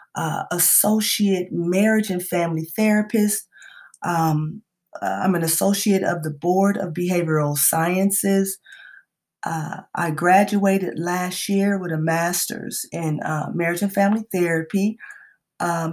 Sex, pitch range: female, 155-200 Hz